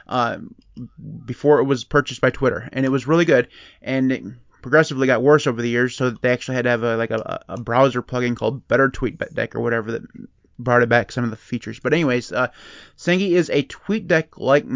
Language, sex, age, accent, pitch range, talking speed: English, male, 30-49, American, 125-150 Hz, 220 wpm